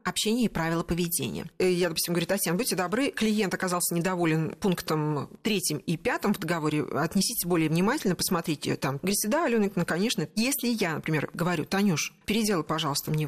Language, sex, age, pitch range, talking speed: Russian, female, 40-59, 165-215 Hz, 165 wpm